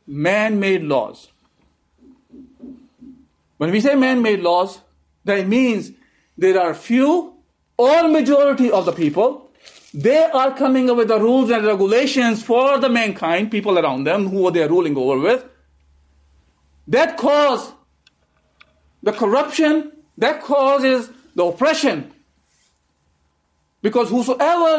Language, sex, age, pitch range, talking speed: English, male, 50-69, 190-270 Hz, 115 wpm